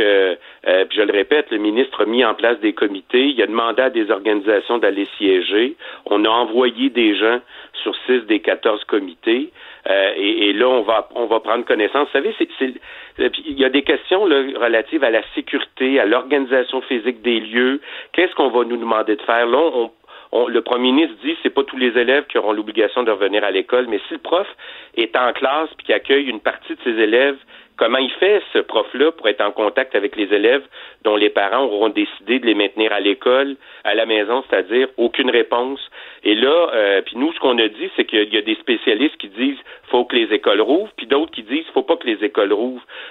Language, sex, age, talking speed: French, male, 50-69, 230 wpm